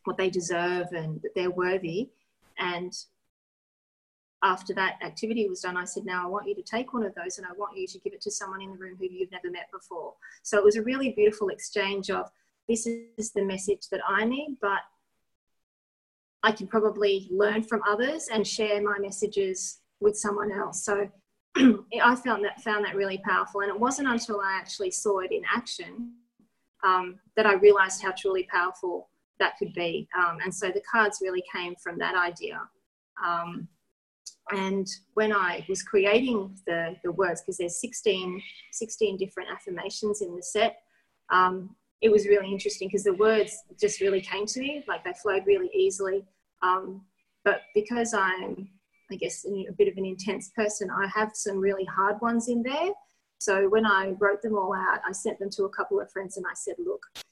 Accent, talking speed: Australian, 190 wpm